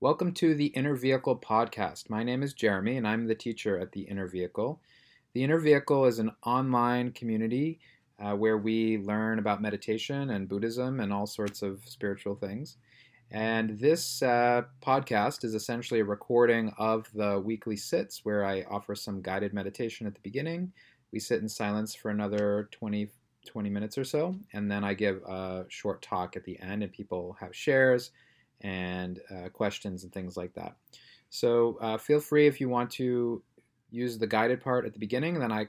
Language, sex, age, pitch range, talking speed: English, male, 30-49, 100-125 Hz, 185 wpm